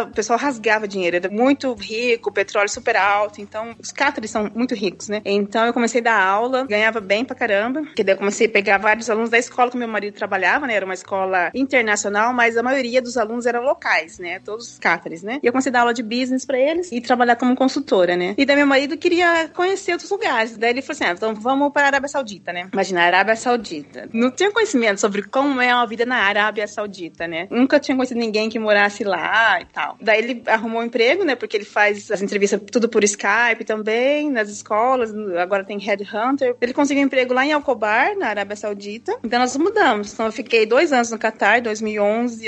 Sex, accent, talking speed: female, Brazilian, 225 wpm